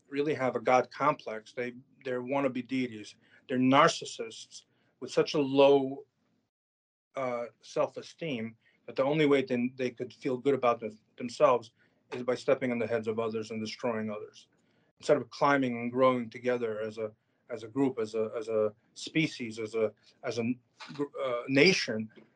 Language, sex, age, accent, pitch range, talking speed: English, male, 30-49, American, 115-135 Hz, 165 wpm